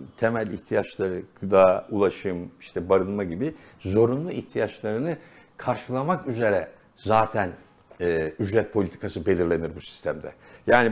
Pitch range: 105-165 Hz